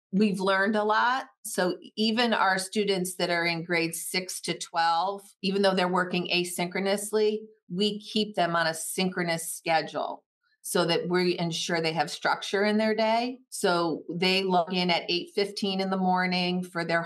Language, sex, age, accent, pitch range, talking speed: English, female, 40-59, American, 170-195 Hz, 170 wpm